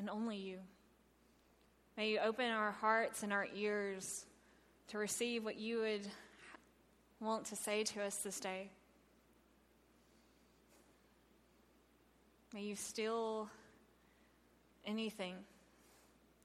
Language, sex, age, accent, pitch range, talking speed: English, female, 20-39, American, 205-265 Hz, 100 wpm